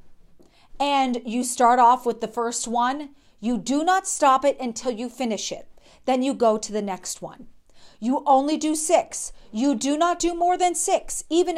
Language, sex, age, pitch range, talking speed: English, female, 40-59, 230-320 Hz, 185 wpm